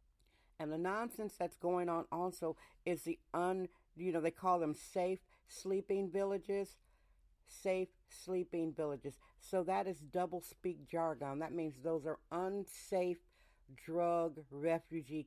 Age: 50-69